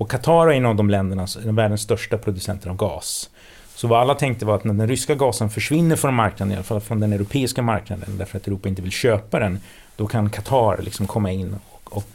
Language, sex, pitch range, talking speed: Swedish, male, 100-115 Hz, 240 wpm